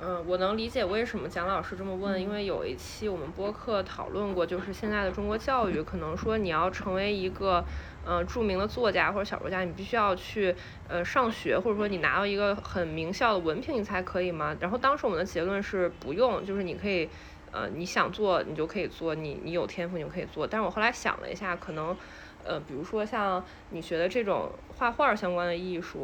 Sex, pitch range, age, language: female, 175-215 Hz, 20-39, Chinese